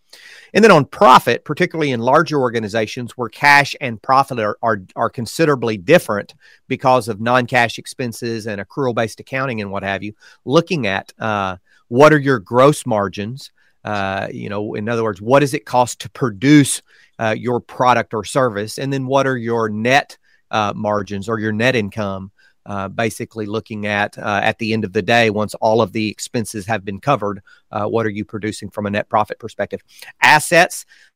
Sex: male